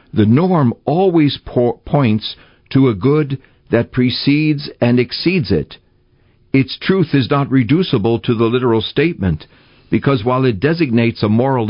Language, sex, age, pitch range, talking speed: English, male, 60-79, 110-140 Hz, 145 wpm